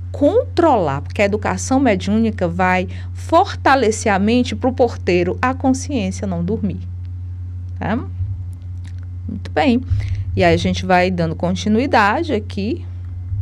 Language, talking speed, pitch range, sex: Portuguese, 115 wpm, 90-100 Hz, female